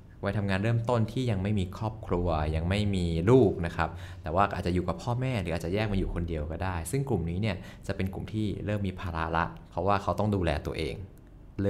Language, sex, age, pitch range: Thai, male, 20-39, 85-105 Hz